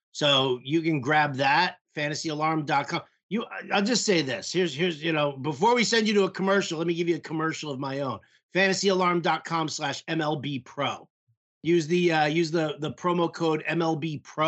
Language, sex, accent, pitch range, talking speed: English, male, American, 140-175 Hz, 190 wpm